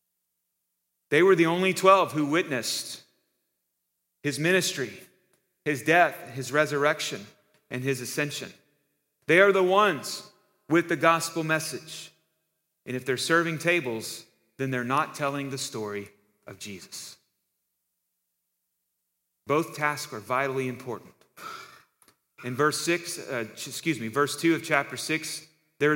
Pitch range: 125-160 Hz